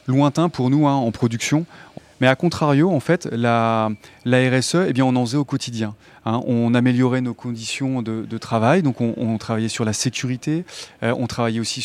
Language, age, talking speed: French, 30-49, 205 wpm